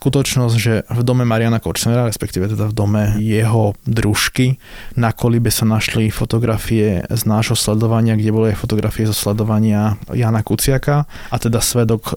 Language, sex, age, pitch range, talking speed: Slovak, male, 20-39, 105-120 Hz, 150 wpm